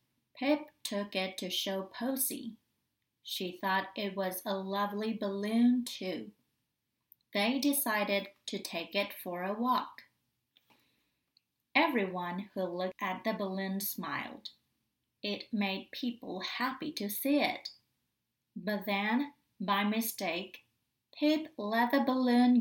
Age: 30-49